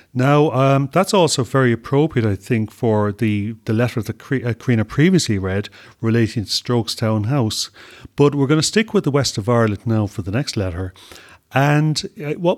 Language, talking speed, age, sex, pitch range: English, 175 wpm, 40-59, male, 110-135 Hz